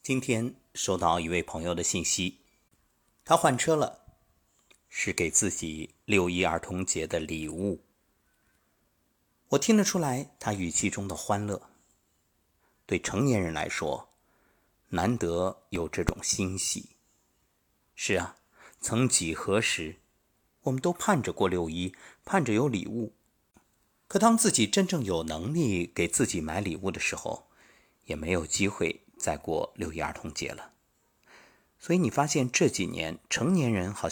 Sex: male